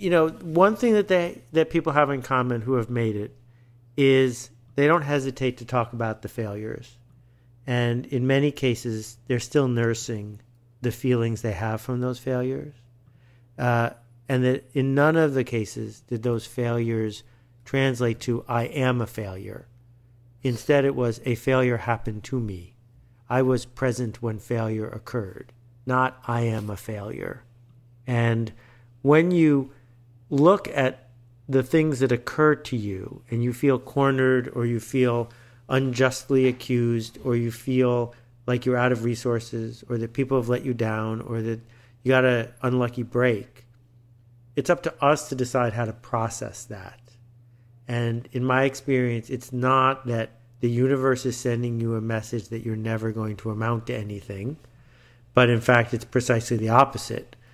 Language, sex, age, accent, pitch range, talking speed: English, male, 50-69, American, 115-130 Hz, 160 wpm